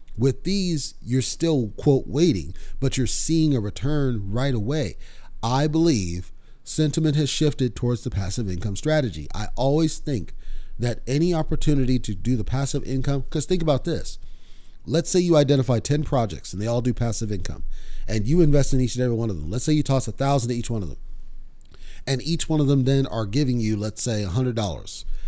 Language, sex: English, male